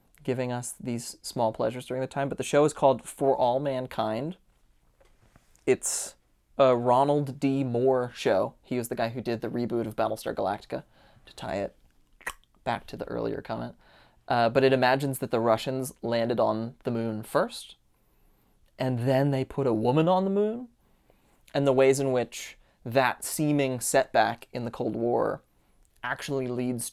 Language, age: English, 20-39